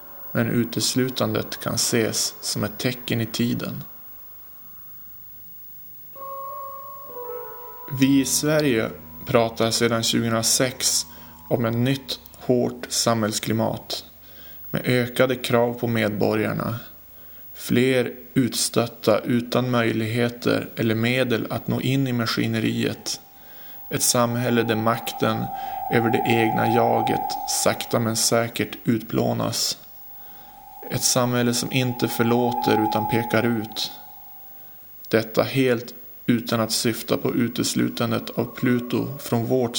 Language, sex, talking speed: English, male, 100 wpm